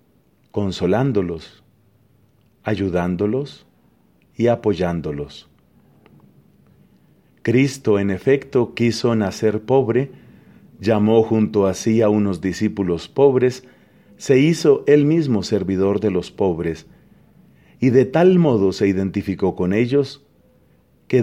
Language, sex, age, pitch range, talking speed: English, male, 40-59, 95-130 Hz, 100 wpm